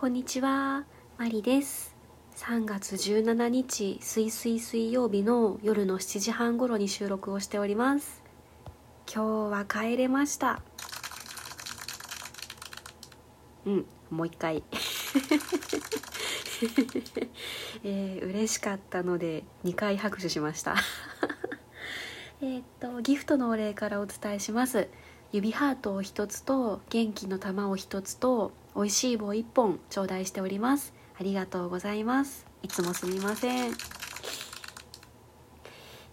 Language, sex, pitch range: Japanese, female, 195-250 Hz